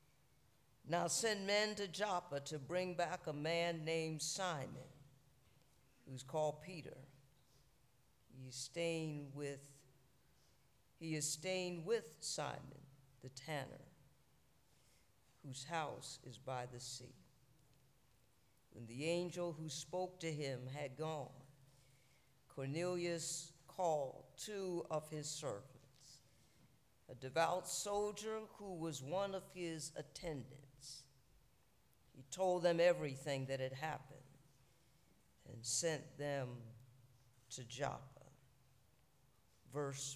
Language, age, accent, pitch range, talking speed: English, 50-69, American, 130-165 Hz, 95 wpm